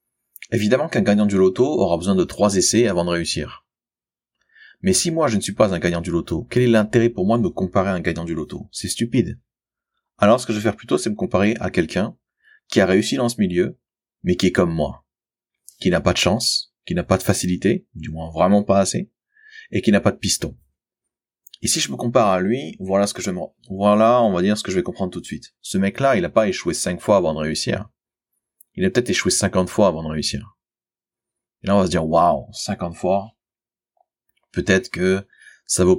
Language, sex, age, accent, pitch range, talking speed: French, male, 30-49, French, 90-110 Hz, 235 wpm